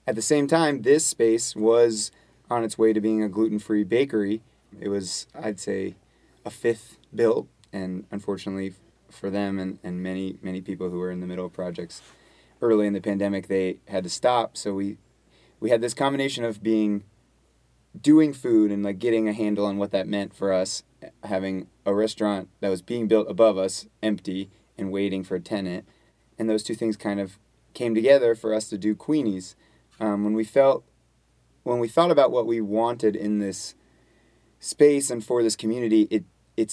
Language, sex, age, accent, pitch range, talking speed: English, male, 20-39, American, 95-110 Hz, 190 wpm